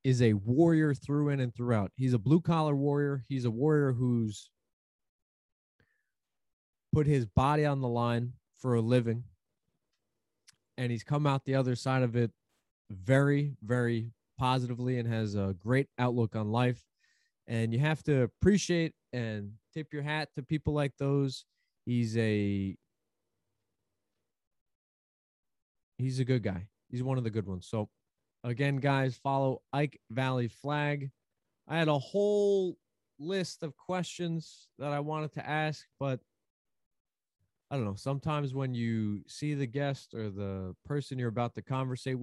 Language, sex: English, male